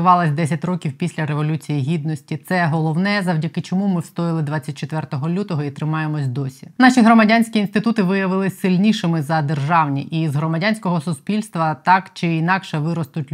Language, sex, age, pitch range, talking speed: Ukrainian, female, 20-39, 155-185 Hz, 140 wpm